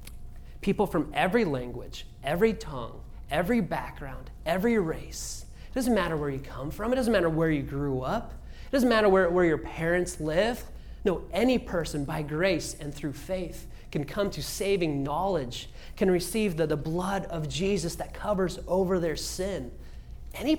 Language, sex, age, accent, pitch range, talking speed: English, male, 30-49, American, 150-200 Hz, 170 wpm